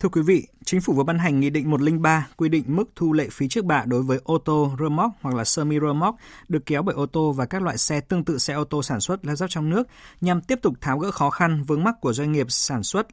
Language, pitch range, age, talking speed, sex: Vietnamese, 135-170 Hz, 20-39, 290 wpm, male